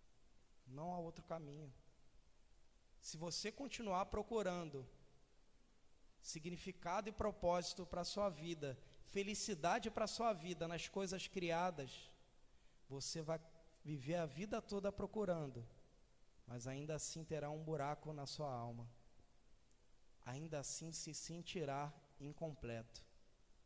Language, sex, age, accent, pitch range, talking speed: Portuguese, male, 20-39, Brazilian, 130-175 Hz, 110 wpm